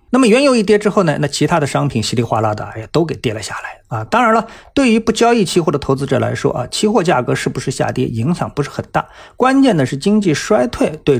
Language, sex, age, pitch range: Chinese, male, 50-69, 120-165 Hz